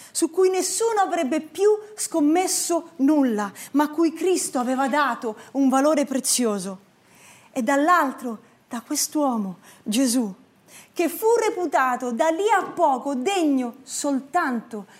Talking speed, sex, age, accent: 115 wpm, female, 30-49, native